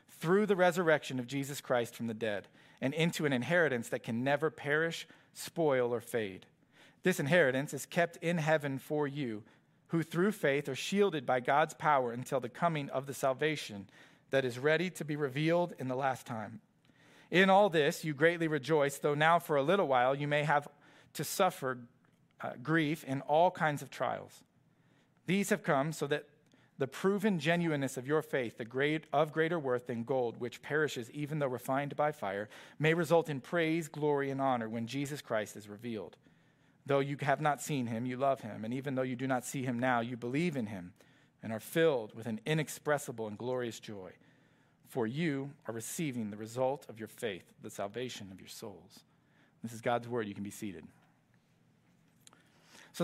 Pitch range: 125-160 Hz